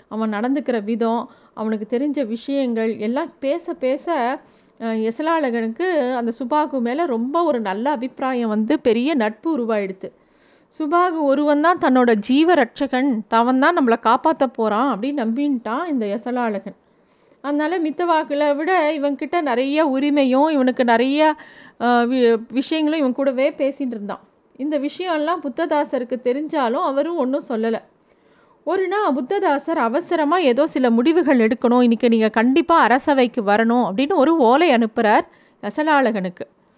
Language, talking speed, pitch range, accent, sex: Tamil, 115 wpm, 235-300 Hz, native, female